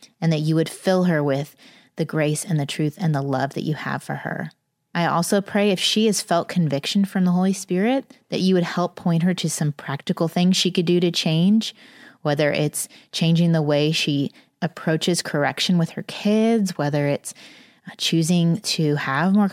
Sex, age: female, 30-49